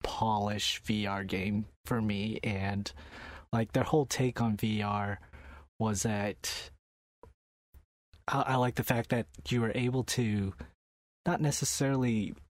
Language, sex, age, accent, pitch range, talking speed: English, male, 30-49, American, 100-115 Hz, 125 wpm